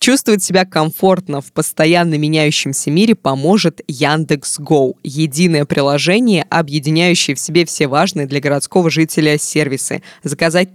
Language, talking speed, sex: Russian, 115 wpm, female